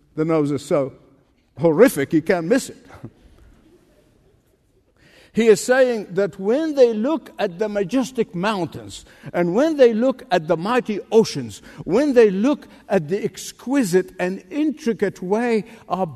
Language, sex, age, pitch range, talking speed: English, male, 60-79, 160-235 Hz, 140 wpm